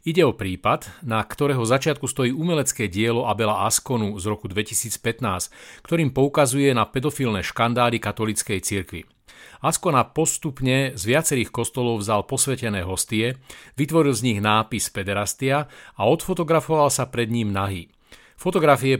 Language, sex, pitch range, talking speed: Slovak, male, 110-135 Hz, 130 wpm